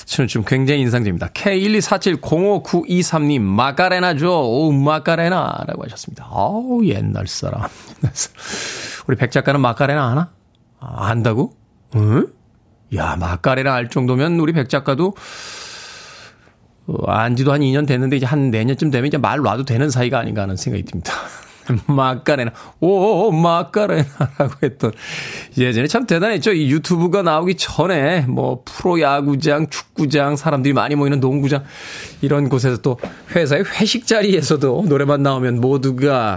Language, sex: Korean, male